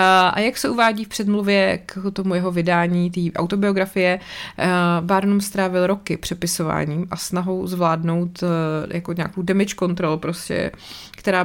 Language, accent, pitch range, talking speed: Czech, native, 170-205 Hz, 145 wpm